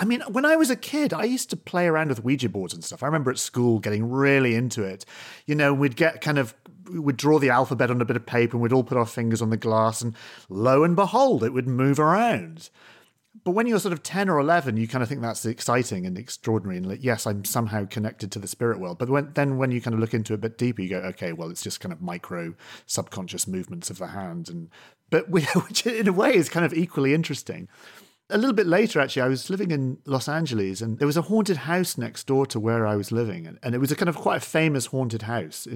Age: 40-59